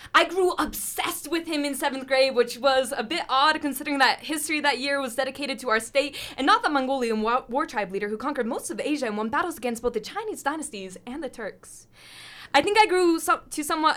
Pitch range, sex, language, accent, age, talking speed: 265-315 Hz, female, English, American, 10-29, 230 wpm